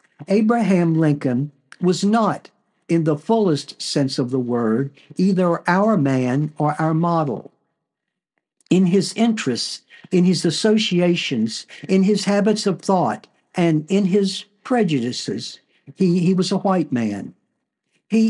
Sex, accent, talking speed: male, American, 130 wpm